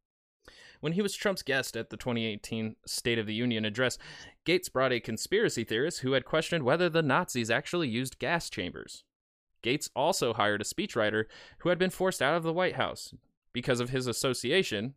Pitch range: 105-130 Hz